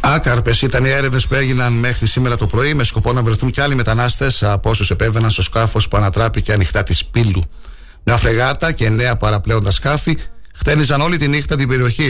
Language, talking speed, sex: Greek, 195 wpm, male